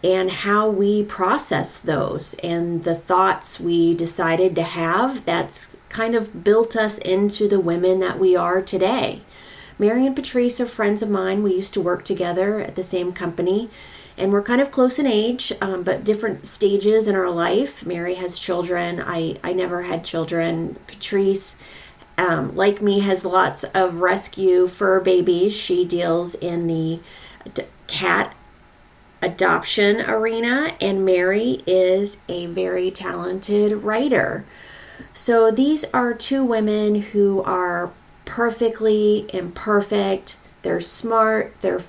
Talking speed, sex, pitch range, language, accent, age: 140 wpm, female, 175-210 Hz, English, American, 30-49